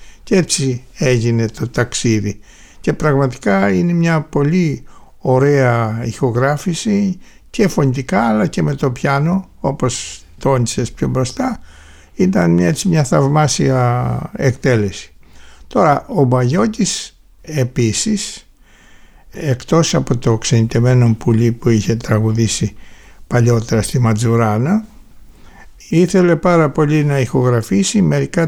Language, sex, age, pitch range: Greek, male, 60-79, 120-160 Hz